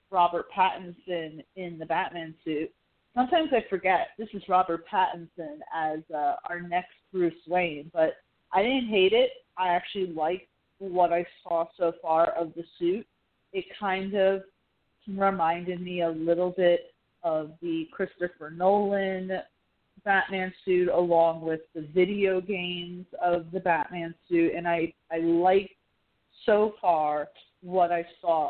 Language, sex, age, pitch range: English, female, 30-49, 170-195 Hz